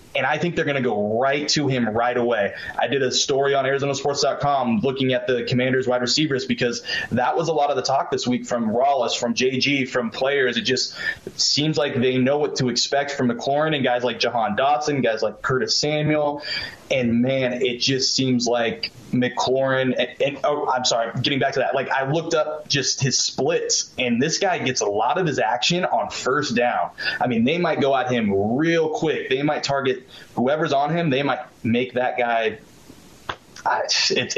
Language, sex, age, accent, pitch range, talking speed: English, male, 20-39, American, 125-150 Hz, 205 wpm